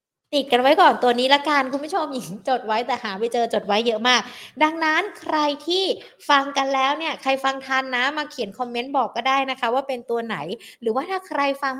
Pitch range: 215-270 Hz